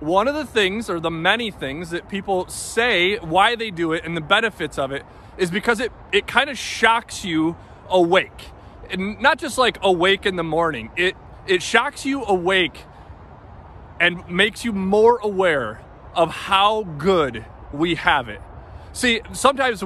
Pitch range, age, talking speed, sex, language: 165-220 Hz, 20-39, 165 wpm, male, English